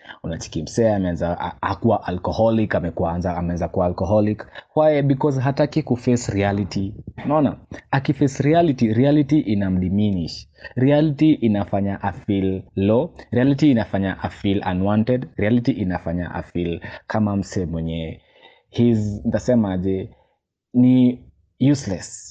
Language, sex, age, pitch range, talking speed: English, male, 20-39, 90-125 Hz, 115 wpm